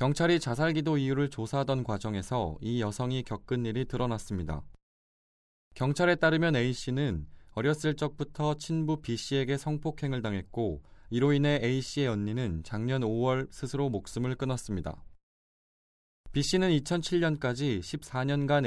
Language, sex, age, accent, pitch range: Korean, male, 20-39, native, 110-145 Hz